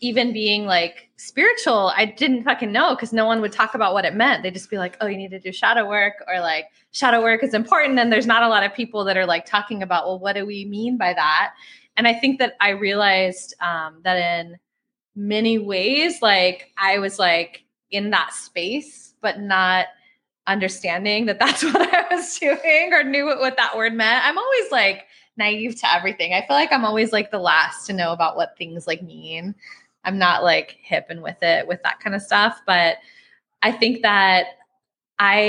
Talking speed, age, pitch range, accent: 210 wpm, 20-39, 185-240 Hz, American